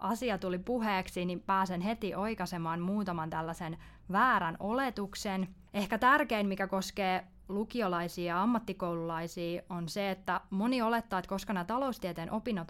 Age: 20-39